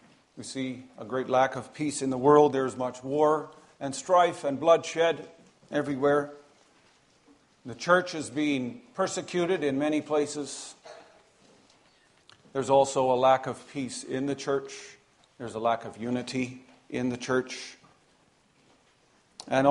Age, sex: 50-69, male